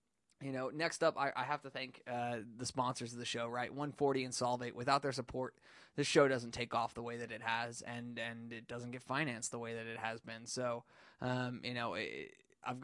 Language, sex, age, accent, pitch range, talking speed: English, male, 20-39, American, 120-140 Hz, 240 wpm